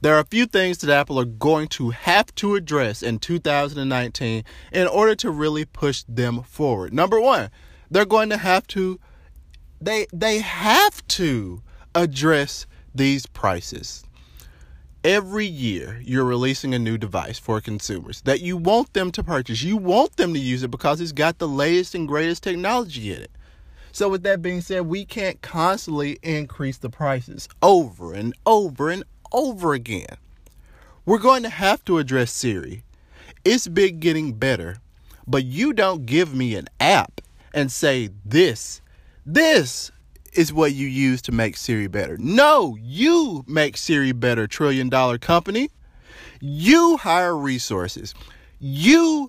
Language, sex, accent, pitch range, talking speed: English, male, American, 105-175 Hz, 155 wpm